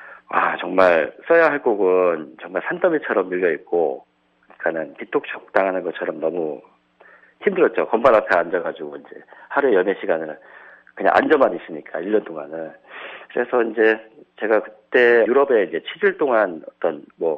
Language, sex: Korean, male